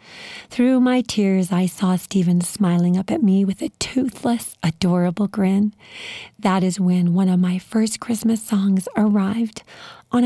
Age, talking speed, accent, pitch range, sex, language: 40-59, 150 wpm, American, 190-230 Hz, female, English